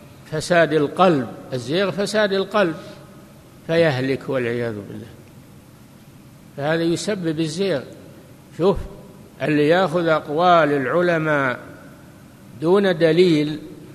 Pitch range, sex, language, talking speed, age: 140-170 Hz, male, Arabic, 75 wpm, 60-79